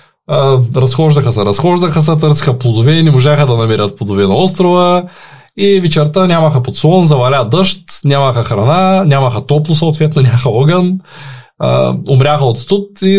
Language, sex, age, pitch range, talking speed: Bulgarian, male, 20-39, 125-170 Hz, 145 wpm